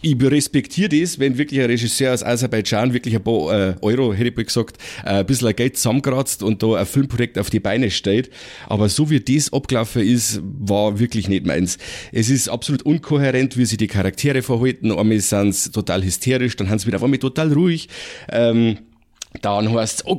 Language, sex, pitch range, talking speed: German, male, 115-135 Hz, 190 wpm